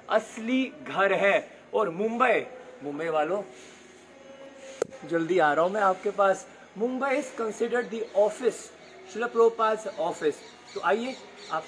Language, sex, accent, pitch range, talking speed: Hindi, male, native, 190-250 Hz, 105 wpm